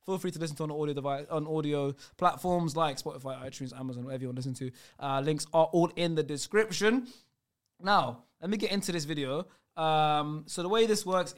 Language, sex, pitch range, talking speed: English, male, 150-190 Hz, 205 wpm